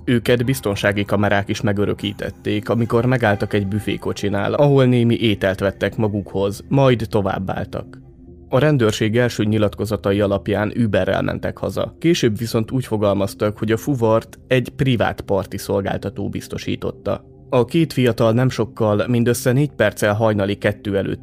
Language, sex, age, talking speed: Hungarian, male, 20-39, 135 wpm